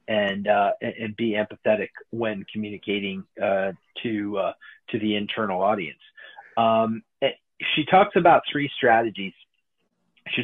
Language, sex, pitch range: English, male, 110-130 Hz